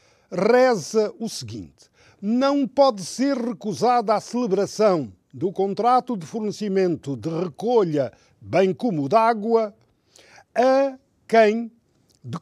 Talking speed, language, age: 100 wpm, Portuguese, 50-69